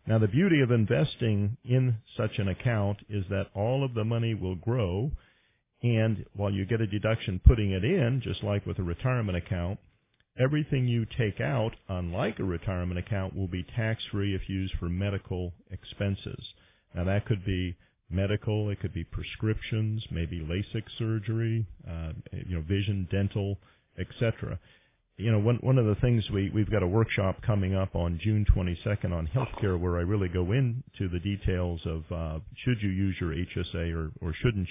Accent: American